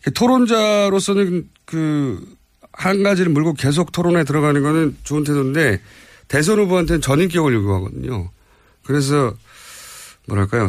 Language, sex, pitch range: Korean, male, 105-175 Hz